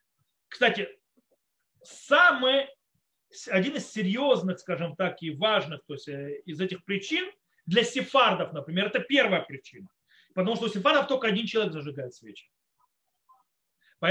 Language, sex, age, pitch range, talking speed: Russian, male, 30-49, 185-255 Hz, 130 wpm